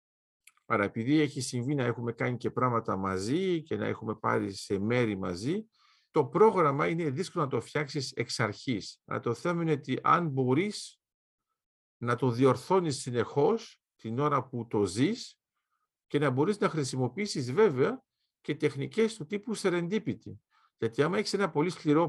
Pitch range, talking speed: 130-180 Hz, 160 wpm